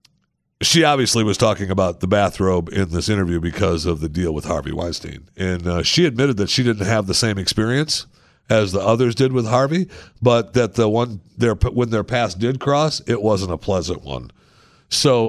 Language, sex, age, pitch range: English, male, 60-79, 100-135 Hz